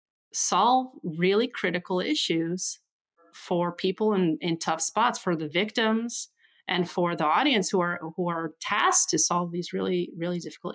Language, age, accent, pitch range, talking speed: English, 30-49, American, 165-200 Hz, 155 wpm